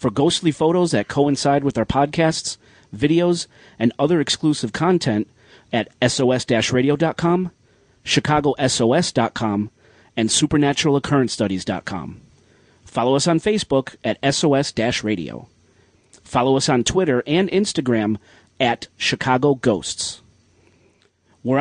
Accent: American